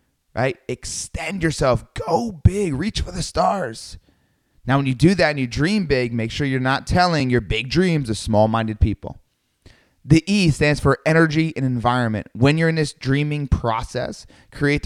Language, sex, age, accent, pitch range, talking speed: English, male, 30-49, American, 115-150 Hz, 175 wpm